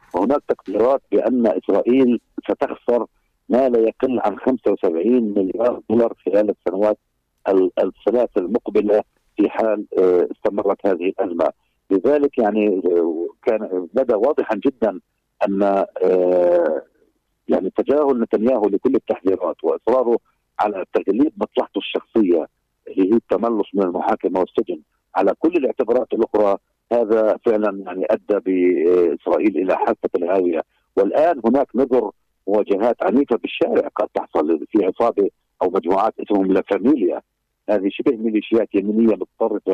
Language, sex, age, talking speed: Arabic, male, 50-69, 115 wpm